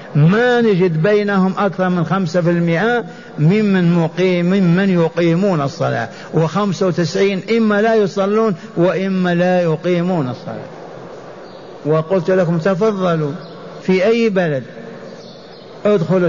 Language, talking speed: Arabic, 105 wpm